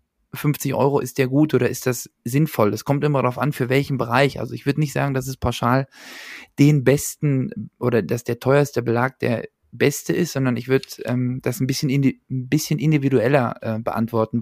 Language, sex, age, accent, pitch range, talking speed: German, male, 20-39, German, 120-140 Hz, 200 wpm